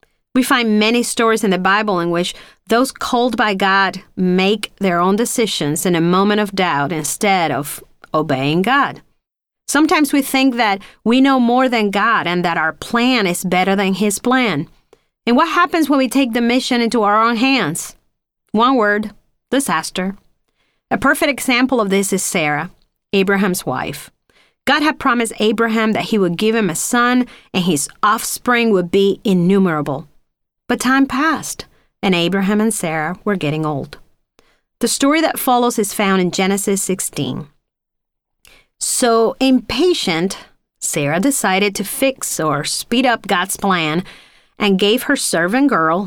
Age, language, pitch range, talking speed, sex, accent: 40-59, English, 185-250 Hz, 155 wpm, female, American